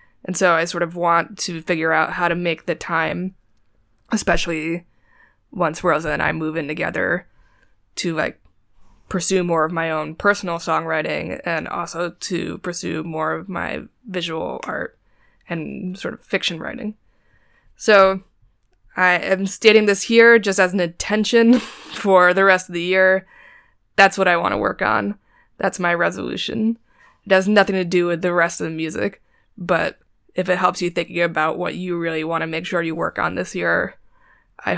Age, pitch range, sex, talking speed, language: 20-39, 170-195 Hz, female, 175 wpm, English